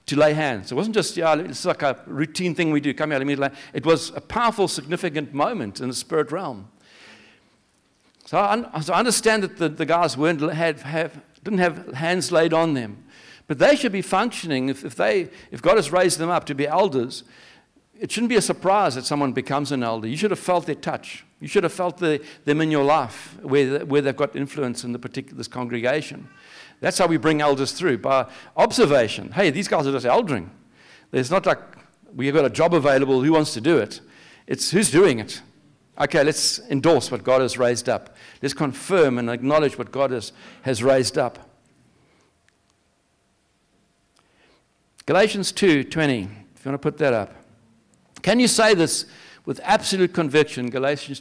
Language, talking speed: English, 195 wpm